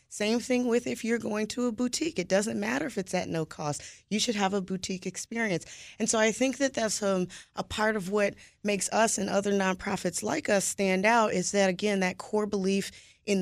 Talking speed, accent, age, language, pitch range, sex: 225 wpm, American, 20-39, English, 195-235 Hz, female